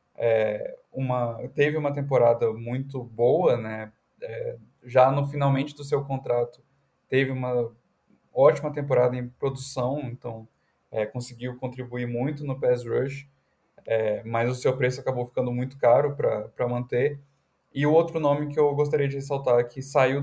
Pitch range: 120-140 Hz